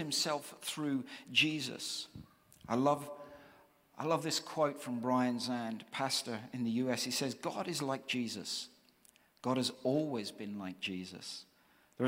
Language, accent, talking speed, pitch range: English, British, 145 wpm, 130-180 Hz